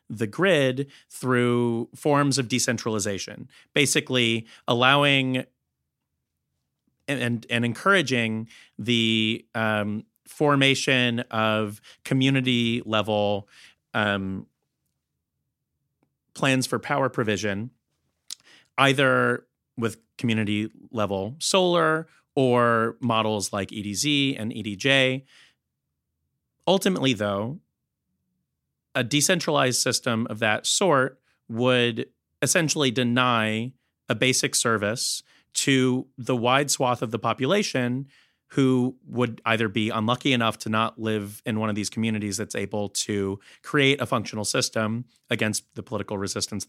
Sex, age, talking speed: male, 30-49, 100 wpm